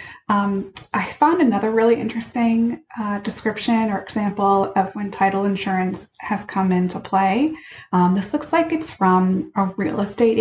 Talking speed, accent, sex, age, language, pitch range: 155 wpm, American, female, 20-39, English, 190-240 Hz